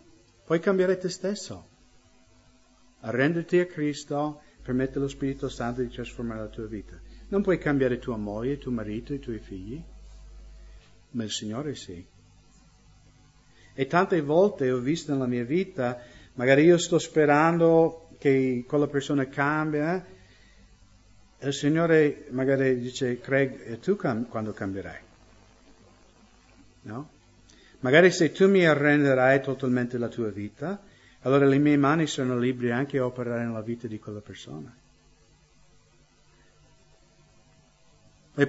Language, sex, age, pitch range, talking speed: English, male, 50-69, 115-150 Hz, 125 wpm